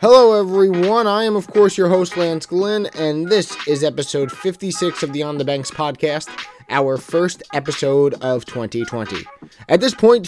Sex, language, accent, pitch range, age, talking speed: male, English, American, 135-170 Hz, 20-39, 170 wpm